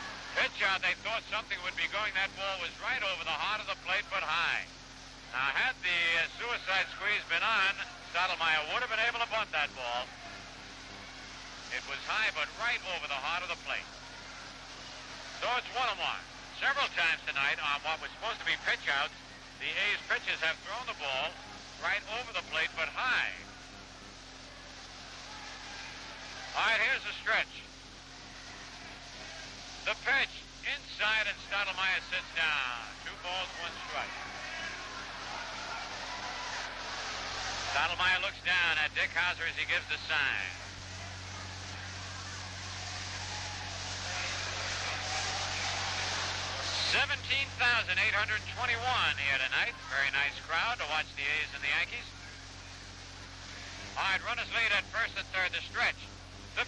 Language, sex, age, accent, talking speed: English, male, 60-79, American, 135 wpm